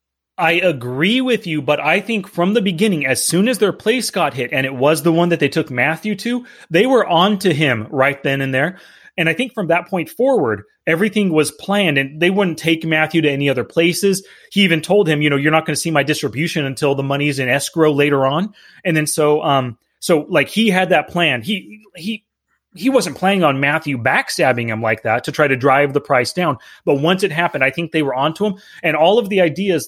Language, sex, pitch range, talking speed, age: English, male, 135-175 Hz, 235 wpm, 30-49